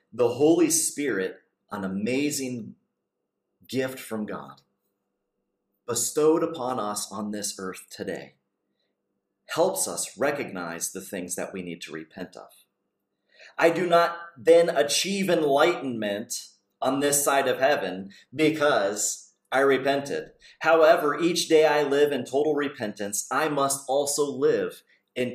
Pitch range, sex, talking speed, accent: 105-160 Hz, male, 125 wpm, American